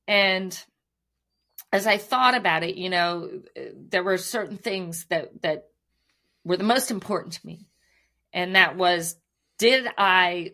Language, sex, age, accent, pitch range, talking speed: English, female, 40-59, American, 185-245 Hz, 140 wpm